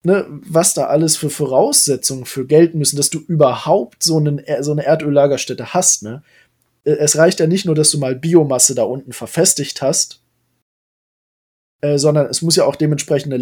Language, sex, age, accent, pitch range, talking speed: German, male, 20-39, German, 125-150 Hz, 175 wpm